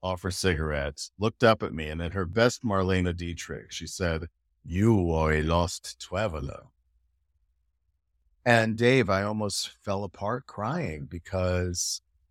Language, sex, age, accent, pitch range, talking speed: English, male, 50-69, American, 80-105 Hz, 135 wpm